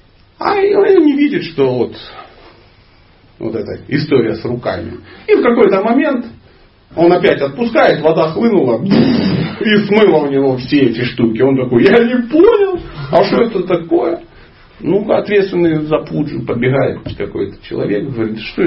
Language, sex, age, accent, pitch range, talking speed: Russian, male, 40-59, native, 110-180 Hz, 150 wpm